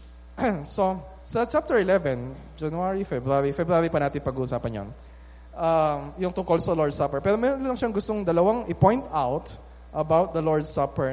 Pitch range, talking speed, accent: 135-220 Hz, 160 wpm, native